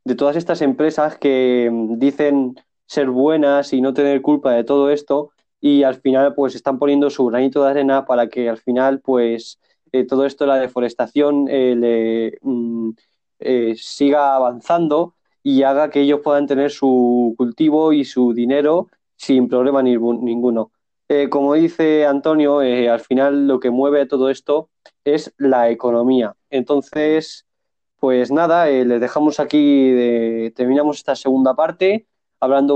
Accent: Spanish